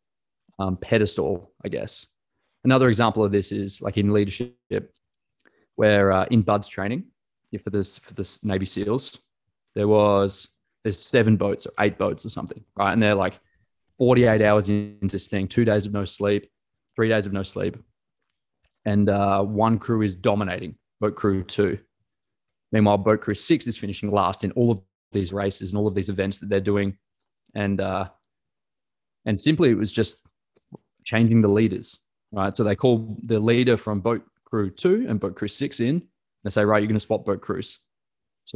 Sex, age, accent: male, 20-39, Australian